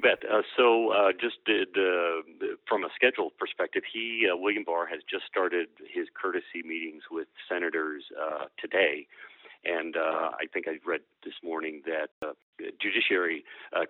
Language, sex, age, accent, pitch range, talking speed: English, male, 40-59, American, 315-395 Hz, 170 wpm